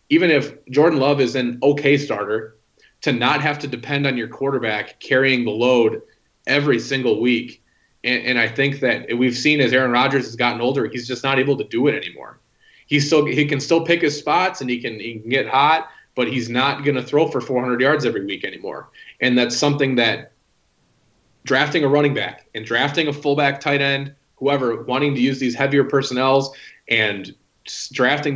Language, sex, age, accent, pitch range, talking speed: English, male, 30-49, American, 125-140 Hz, 195 wpm